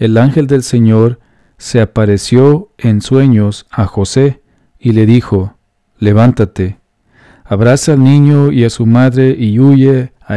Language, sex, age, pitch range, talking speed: English, male, 40-59, 105-130 Hz, 140 wpm